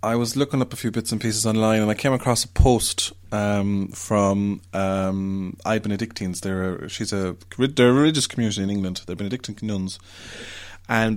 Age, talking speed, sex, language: 30-49, 165 wpm, male, English